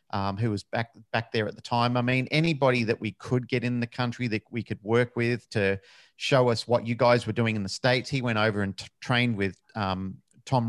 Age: 40-59